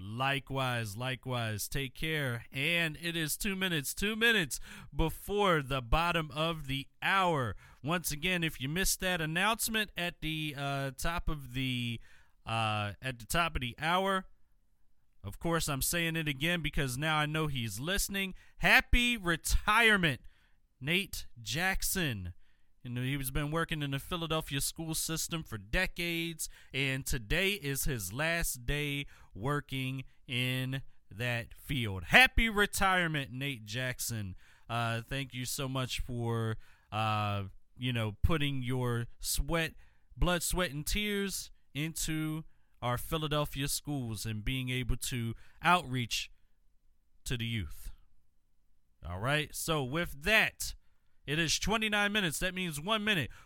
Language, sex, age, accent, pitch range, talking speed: English, male, 30-49, American, 120-170 Hz, 135 wpm